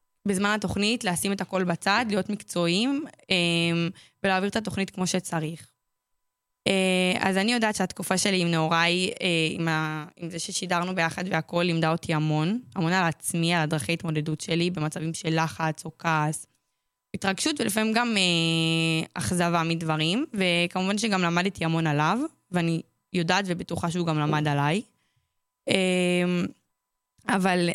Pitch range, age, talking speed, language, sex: 165-195 Hz, 20-39, 125 wpm, Hebrew, female